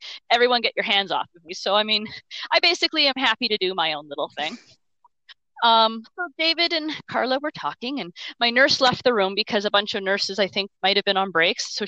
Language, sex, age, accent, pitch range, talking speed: English, female, 30-49, American, 195-325 Hz, 230 wpm